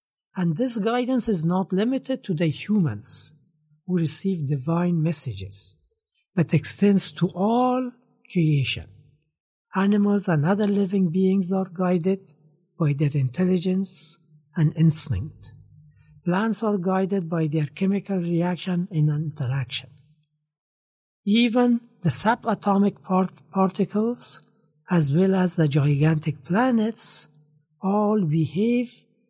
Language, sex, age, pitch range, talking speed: Arabic, male, 60-79, 150-205 Hz, 105 wpm